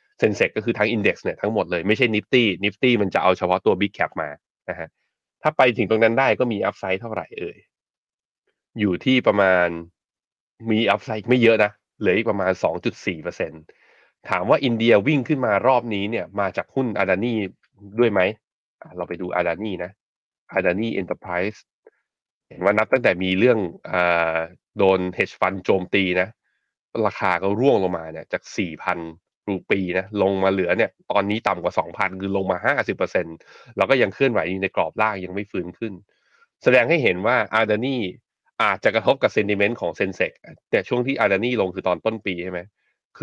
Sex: male